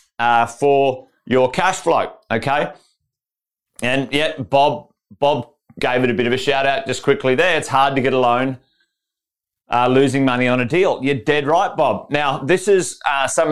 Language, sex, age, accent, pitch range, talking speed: English, male, 30-49, Australian, 135-170 Hz, 185 wpm